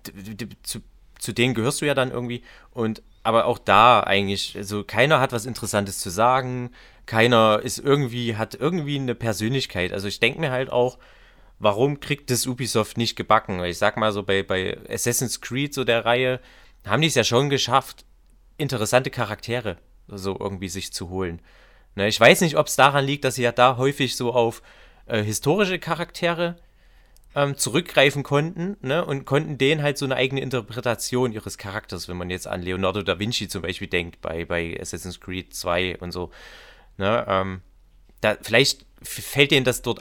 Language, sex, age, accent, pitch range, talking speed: German, male, 30-49, German, 100-130 Hz, 180 wpm